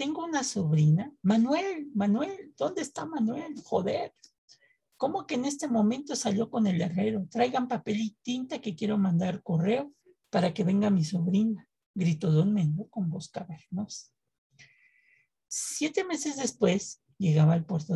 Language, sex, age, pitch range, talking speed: Spanish, male, 50-69, 165-230 Hz, 145 wpm